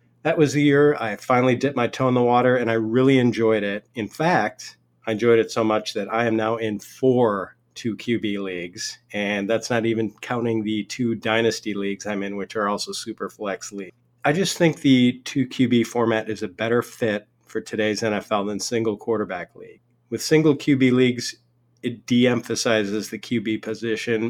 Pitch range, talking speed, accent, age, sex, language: 110-120 Hz, 190 wpm, American, 40-59, male, English